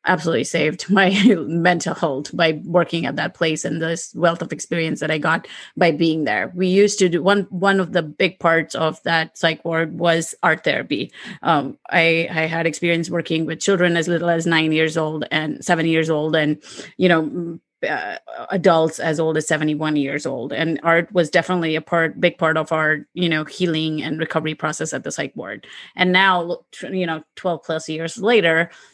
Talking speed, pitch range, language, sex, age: 195 wpm, 160-180 Hz, English, female, 30-49